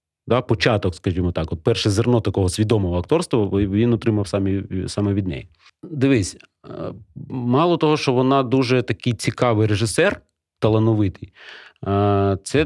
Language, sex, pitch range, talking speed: Ukrainian, male, 100-125 Hz, 130 wpm